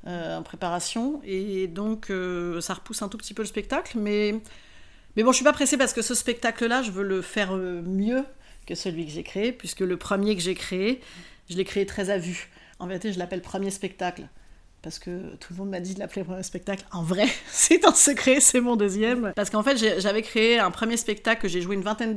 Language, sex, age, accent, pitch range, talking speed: French, female, 40-59, French, 185-225 Hz, 235 wpm